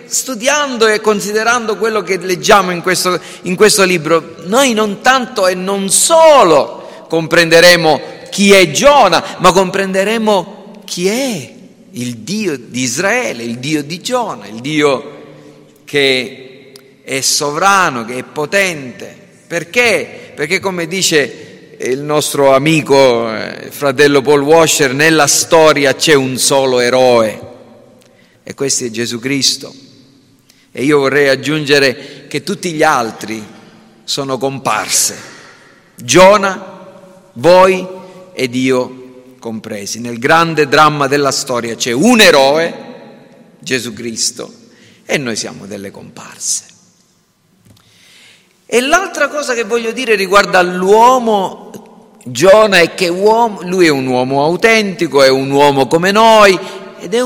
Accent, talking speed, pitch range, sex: native, 125 wpm, 135-200 Hz, male